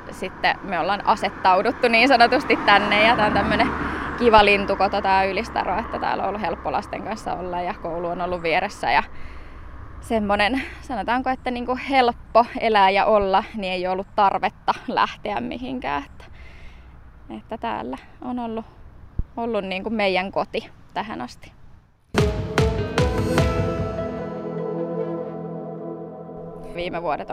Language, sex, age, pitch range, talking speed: Finnish, female, 20-39, 180-235 Hz, 120 wpm